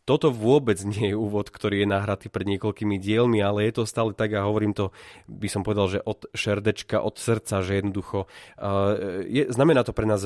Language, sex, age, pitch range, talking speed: Slovak, male, 30-49, 100-115 Hz, 200 wpm